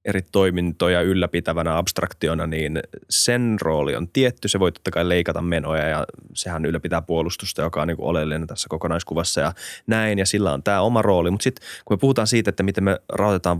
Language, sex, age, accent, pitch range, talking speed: Finnish, male, 20-39, native, 85-105 Hz, 195 wpm